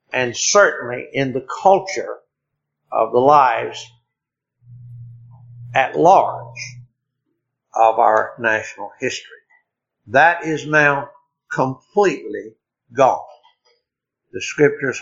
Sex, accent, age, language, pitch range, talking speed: male, American, 60-79, English, 125-190 Hz, 85 wpm